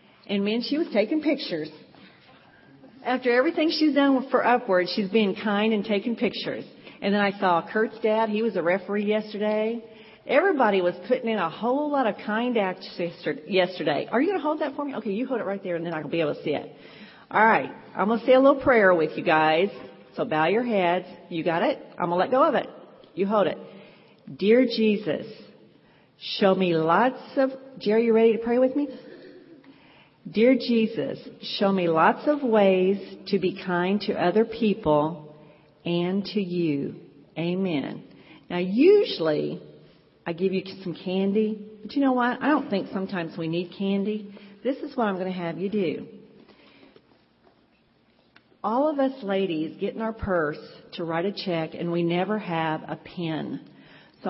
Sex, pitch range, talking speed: female, 175-240 Hz, 185 wpm